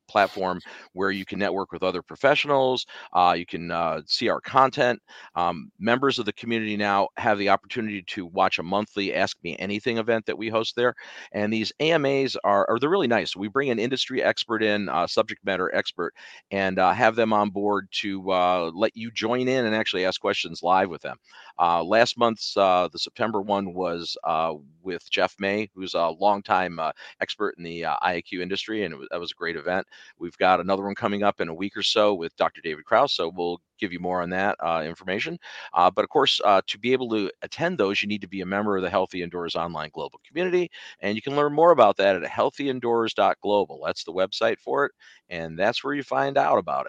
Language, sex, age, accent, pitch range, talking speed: English, male, 40-59, American, 95-115 Hz, 220 wpm